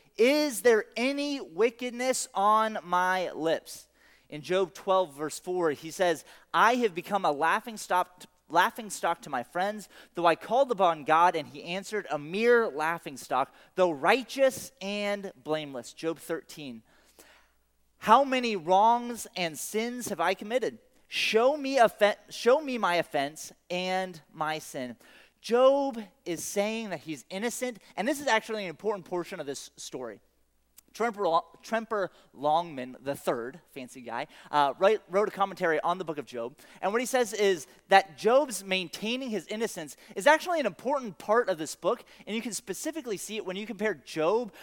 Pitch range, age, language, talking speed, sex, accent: 165-230 Hz, 30-49, English, 155 wpm, male, American